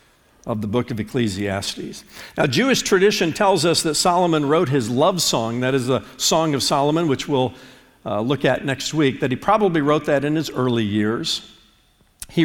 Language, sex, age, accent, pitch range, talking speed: English, male, 50-69, American, 125-190 Hz, 190 wpm